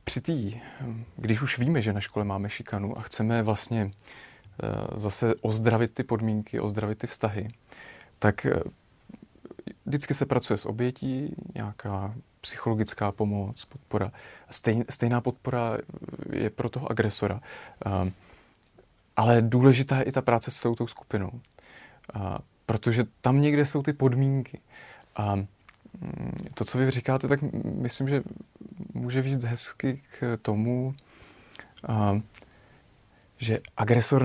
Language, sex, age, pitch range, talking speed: Czech, male, 30-49, 110-135 Hz, 115 wpm